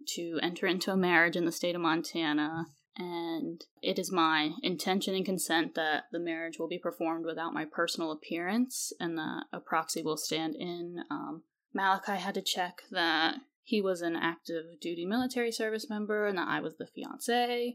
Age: 10-29